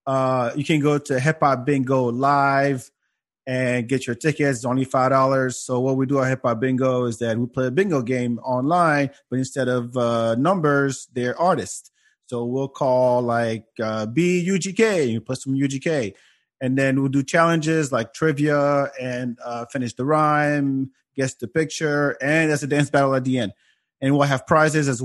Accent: American